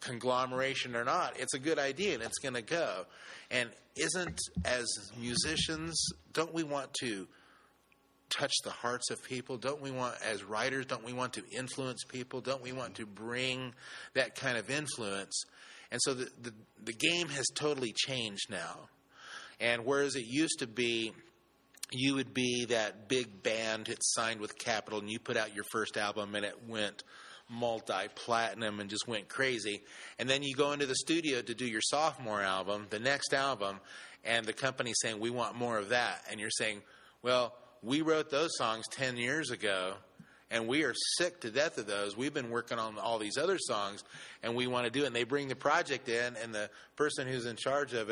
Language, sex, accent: English, male, American